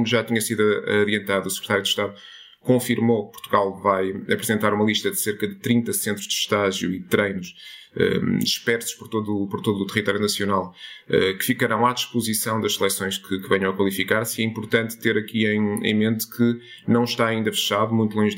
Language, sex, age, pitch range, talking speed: Portuguese, male, 20-39, 100-115 Hz, 200 wpm